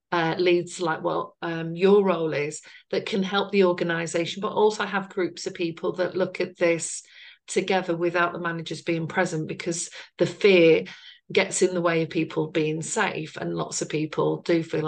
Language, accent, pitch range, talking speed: English, British, 165-190 Hz, 180 wpm